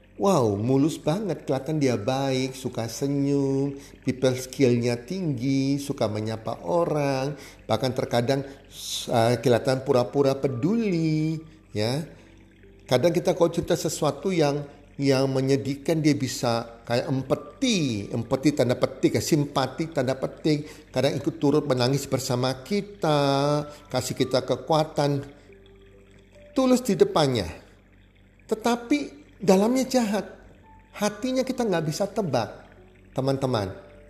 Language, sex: Indonesian, male